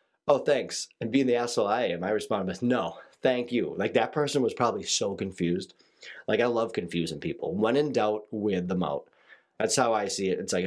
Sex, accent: male, American